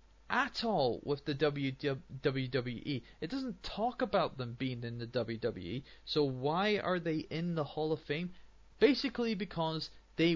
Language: English